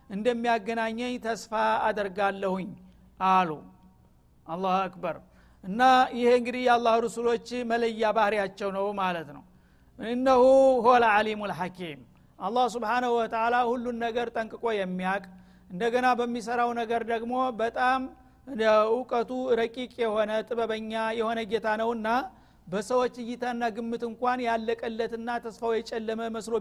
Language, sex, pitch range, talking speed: Amharic, male, 210-240 Hz, 105 wpm